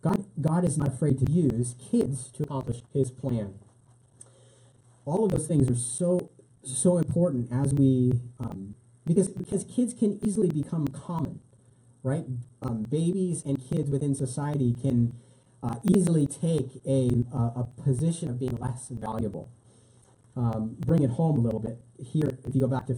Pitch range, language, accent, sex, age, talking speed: 120-145 Hz, English, American, male, 30-49, 160 wpm